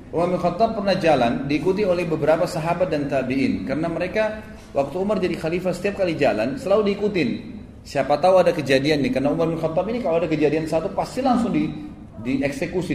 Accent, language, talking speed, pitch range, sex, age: native, Indonesian, 180 wpm, 135-190 Hz, male, 30-49